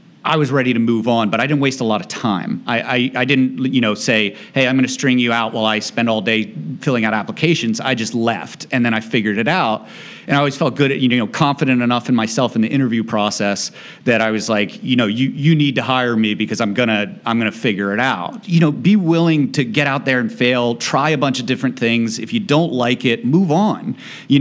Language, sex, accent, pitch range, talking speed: English, male, American, 115-135 Hz, 260 wpm